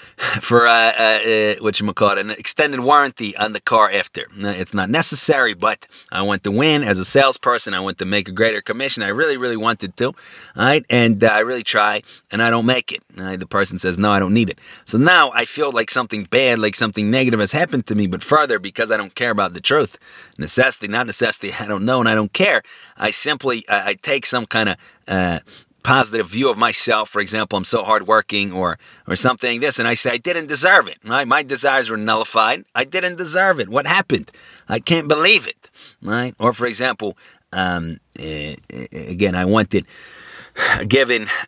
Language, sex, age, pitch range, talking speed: English, male, 30-49, 100-125 Hz, 205 wpm